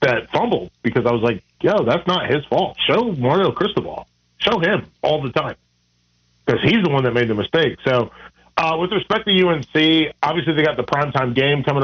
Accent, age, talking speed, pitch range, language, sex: American, 40-59, 205 wpm, 115-150 Hz, English, male